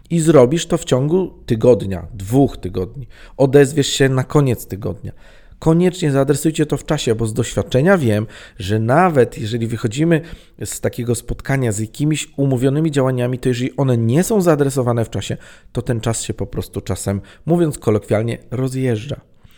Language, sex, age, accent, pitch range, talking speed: Polish, male, 40-59, native, 110-145 Hz, 155 wpm